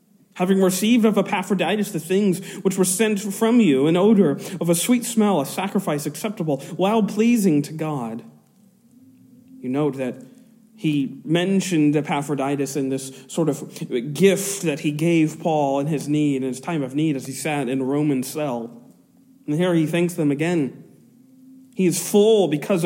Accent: American